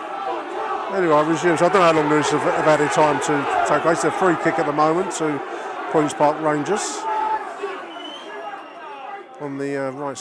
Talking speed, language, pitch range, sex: 180 wpm, English, 125-155 Hz, male